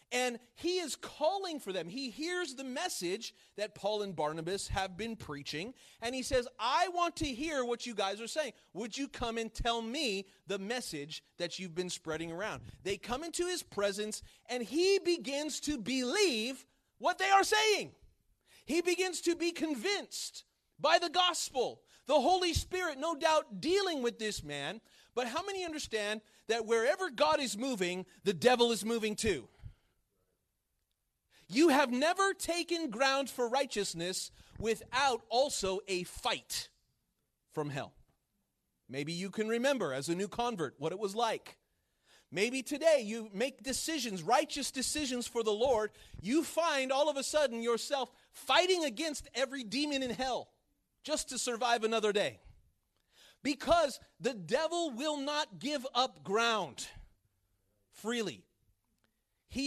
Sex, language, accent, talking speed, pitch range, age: male, English, American, 150 wpm, 205-300 Hz, 30-49